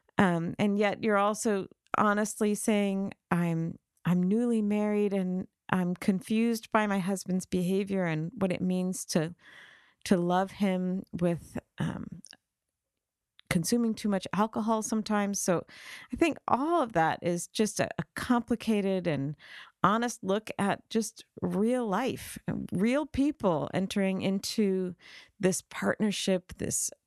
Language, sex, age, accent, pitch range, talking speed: English, female, 40-59, American, 175-210 Hz, 130 wpm